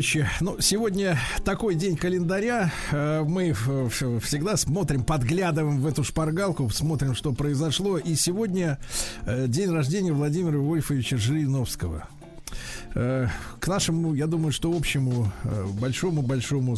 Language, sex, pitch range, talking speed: Russian, male, 125-165 Hz, 105 wpm